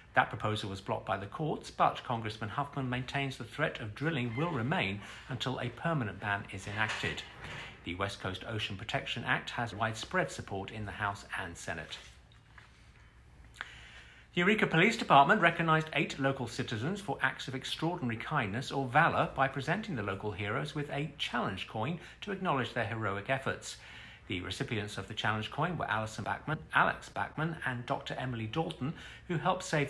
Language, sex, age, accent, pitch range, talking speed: English, male, 50-69, British, 105-140 Hz, 170 wpm